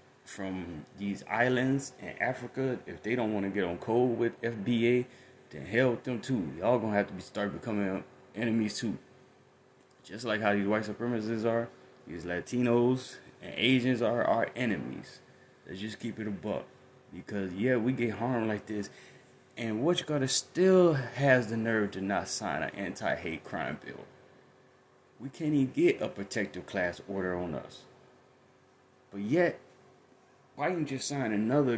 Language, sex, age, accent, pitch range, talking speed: English, male, 20-39, American, 100-130 Hz, 170 wpm